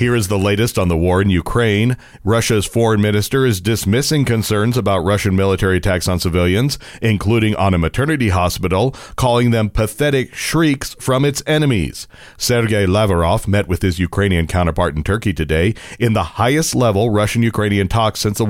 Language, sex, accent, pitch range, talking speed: English, male, American, 95-115 Hz, 165 wpm